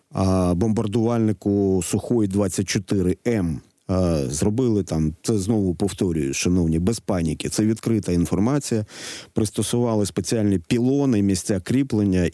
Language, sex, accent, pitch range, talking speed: Ukrainian, male, native, 95-120 Hz, 90 wpm